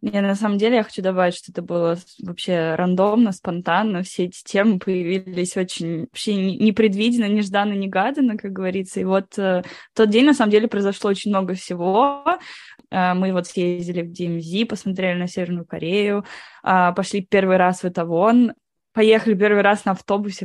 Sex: female